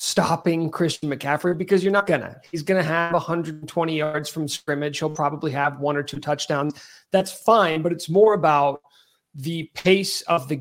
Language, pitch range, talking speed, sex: English, 145-175 Hz, 175 wpm, male